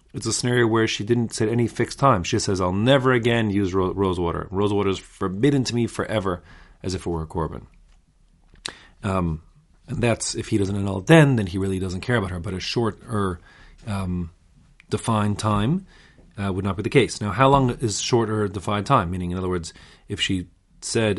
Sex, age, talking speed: male, 30-49, 205 wpm